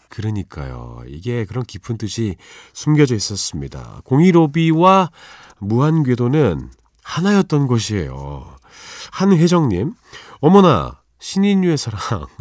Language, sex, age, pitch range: Korean, male, 40-59, 95-155 Hz